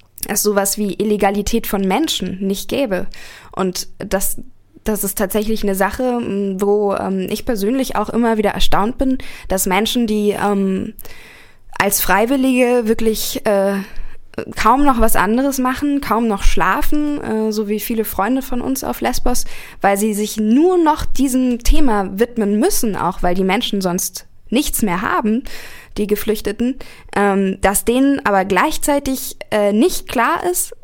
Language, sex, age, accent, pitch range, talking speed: German, female, 10-29, German, 195-240 Hz, 145 wpm